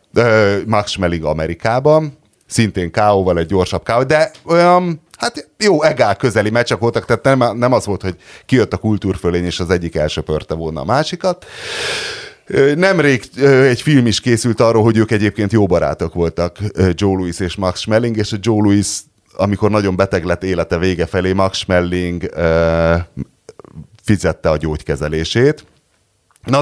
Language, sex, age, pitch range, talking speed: Hungarian, male, 30-49, 85-120 Hz, 145 wpm